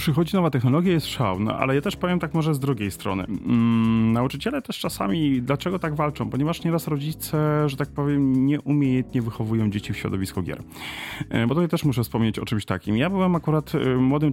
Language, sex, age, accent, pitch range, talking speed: Polish, male, 30-49, native, 110-150 Hz, 205 wpm